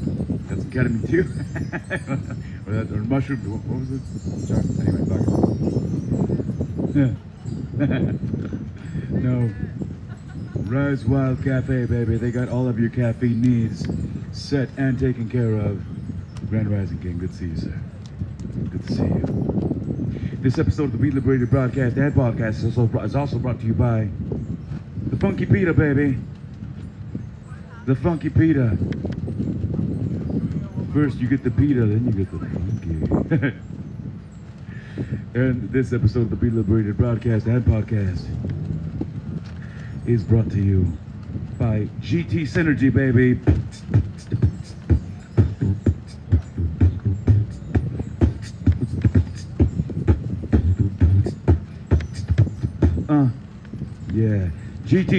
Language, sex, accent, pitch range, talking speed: English, male, American, 105-135 Hz, 105 wpm